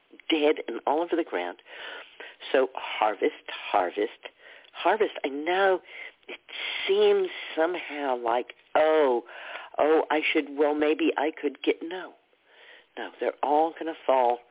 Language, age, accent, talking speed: English, 50-69, American, 130 wpm